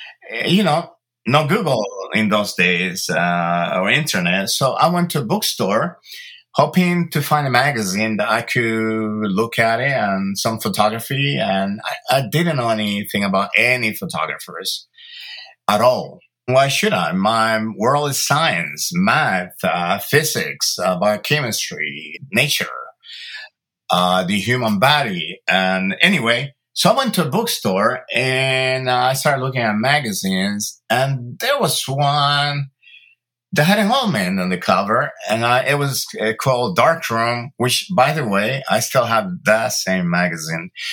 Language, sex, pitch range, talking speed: English, male, 110-165 Hz, 150 wpm